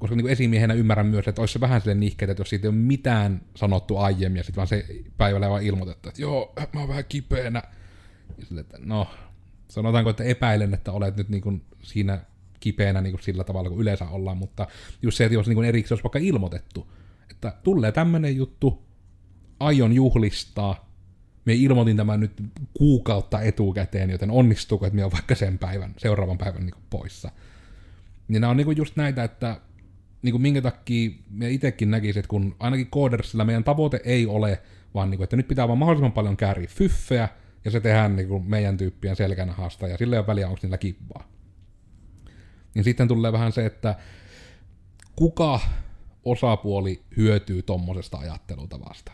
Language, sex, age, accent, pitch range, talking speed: Finnish, male, 30-49, native, 95-115 Hz, 175 wpm